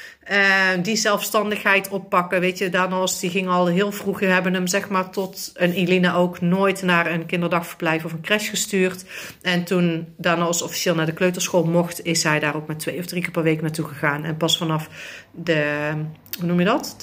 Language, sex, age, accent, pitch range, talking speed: Dutch, female, 40-59, Dutch, 170-195 Hz, 205 wpm